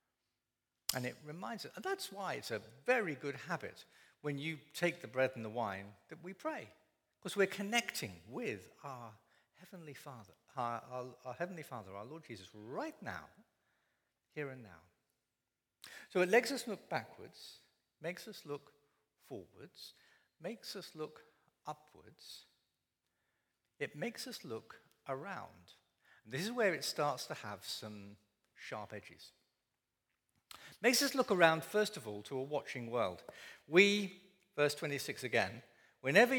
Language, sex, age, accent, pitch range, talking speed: English, male, 60-79, British, 120-190 Hz, 145 wpm